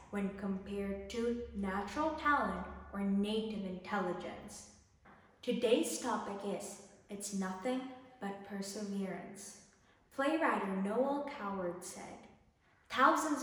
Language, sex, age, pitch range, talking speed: English, female, 20-39, 200-260 Hz, 90 wpm